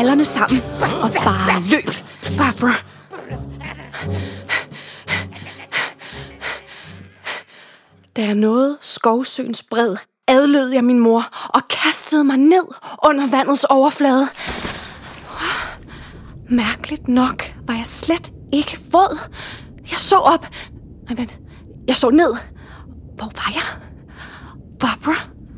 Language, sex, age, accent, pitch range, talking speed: English, female, 20-39, Danish, 230-295 Hz, 85 wpm